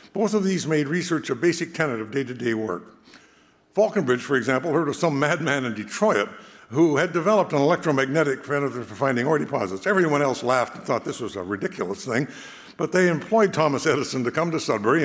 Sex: male